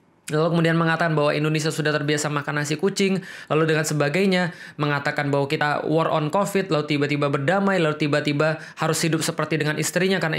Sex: male